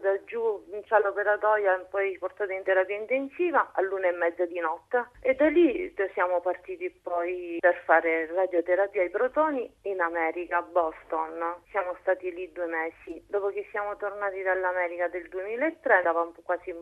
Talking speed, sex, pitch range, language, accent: 165 wpm, female, 175-215 Hz, Italian, native